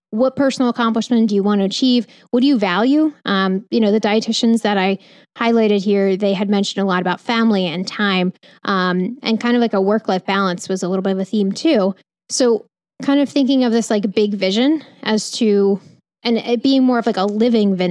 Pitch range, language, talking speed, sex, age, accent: 195-235 Hz, English, 220 wpm, female, 10-29, American